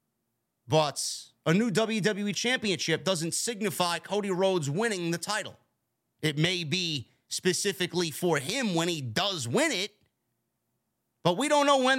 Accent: American